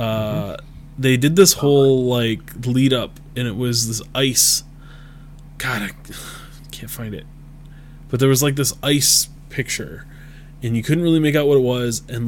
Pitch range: 110-145 Hz